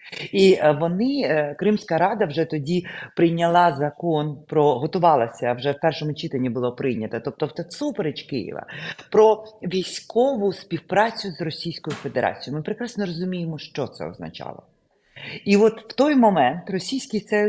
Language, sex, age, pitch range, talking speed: Ukrainian, female, 40-59, 145-205 Hz, 135 wpm